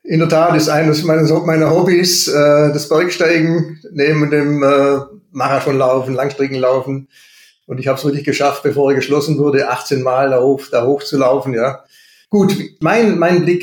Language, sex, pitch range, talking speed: German, male, 135-155 Hz, 165 wpm